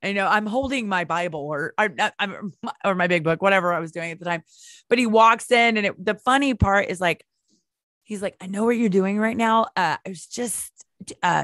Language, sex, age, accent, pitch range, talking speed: English, female, 20-39, American, 165-210 Hz, 225 wpm